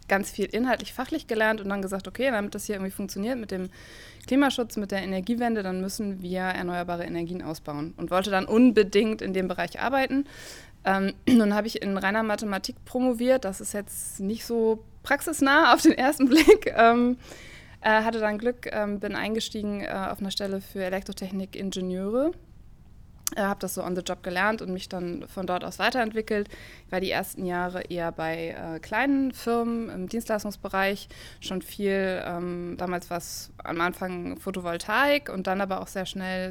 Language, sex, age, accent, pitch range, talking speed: German, female, 20-39, German, 185-225 Hz, 180 wpm